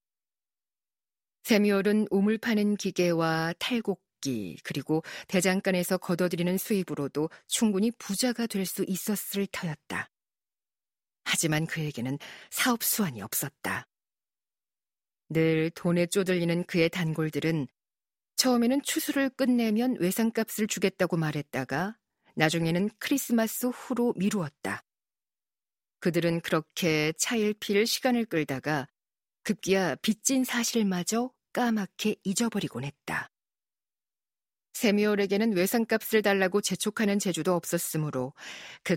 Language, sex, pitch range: Korean, female, 160-210 Hz